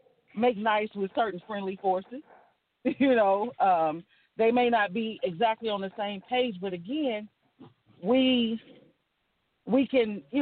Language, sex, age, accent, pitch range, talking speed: English, female, 40-59, American, 185-245 Hz, 140 wpm